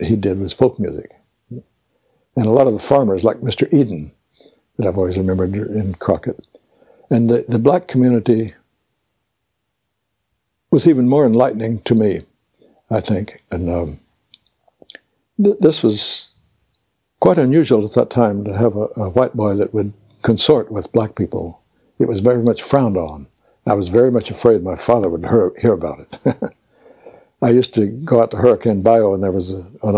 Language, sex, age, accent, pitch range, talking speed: English, male, 60-79, American, 100-120 Hz, 170 wpm